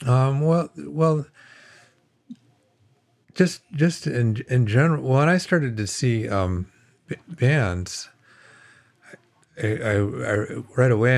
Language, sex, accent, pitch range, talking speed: English, male, American, 90-120 Hz, 105 wpm